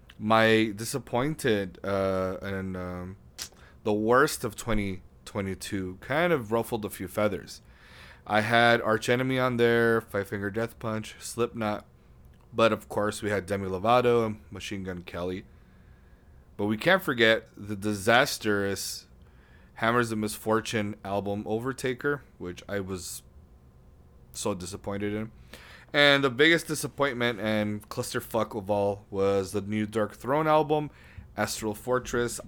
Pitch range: 95-115 Hz